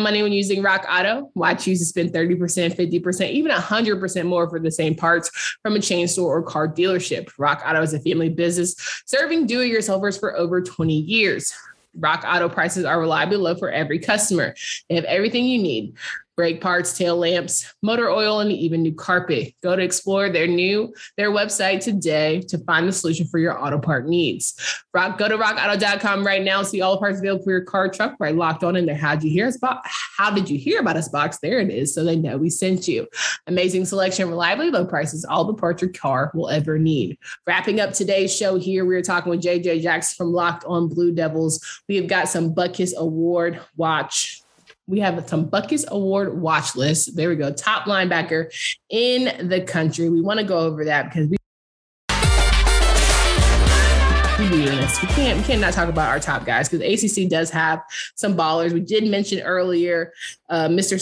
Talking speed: 195 wpm